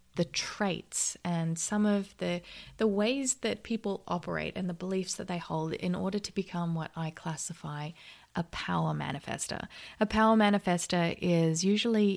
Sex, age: female, 20-39